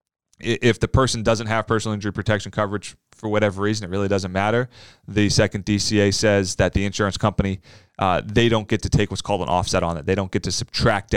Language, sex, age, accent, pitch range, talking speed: English, male, 30-49, American, 100-125 Hz, 220 wpm